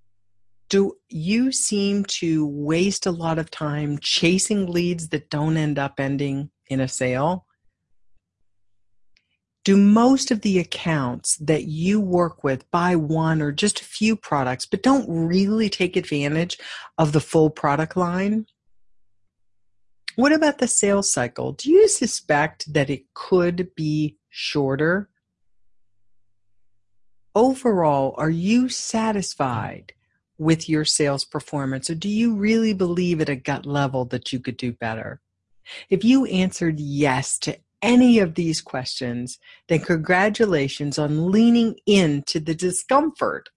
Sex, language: female, English